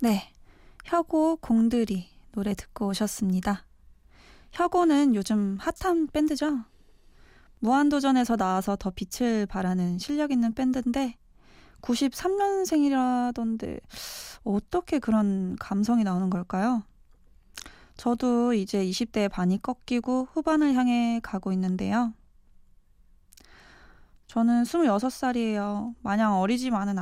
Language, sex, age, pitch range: Korean, female, 20-39, 200-250 Hz